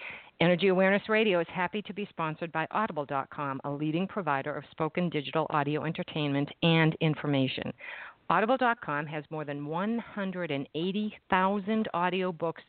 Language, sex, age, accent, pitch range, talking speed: English, female, 50-69, American, 150-190 Hz, 125 wpm